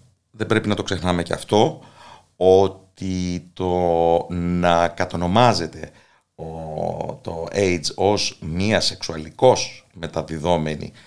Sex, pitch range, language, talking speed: male, 85-105 Hz, Greek, 90 wpm